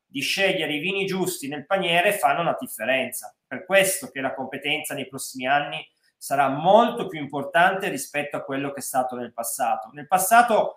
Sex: male